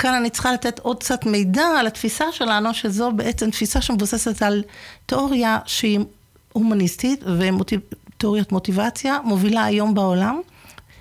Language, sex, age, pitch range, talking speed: Hebrew, female, 50-69, 200-235 Hz, 130 wpm